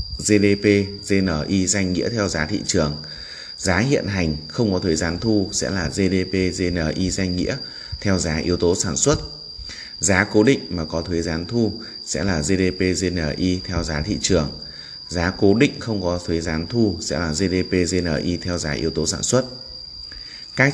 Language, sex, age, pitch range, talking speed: Vietnamese, male, 20-39, 80-100 Hz, 180 wpm